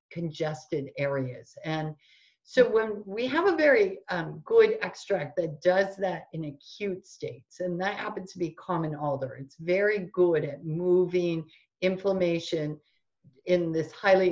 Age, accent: 50-69, American